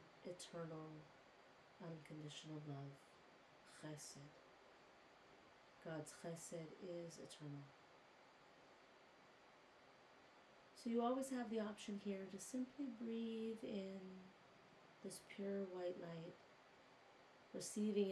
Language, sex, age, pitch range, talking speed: English, female, 30-49, 175-220 Hz, 80 wpm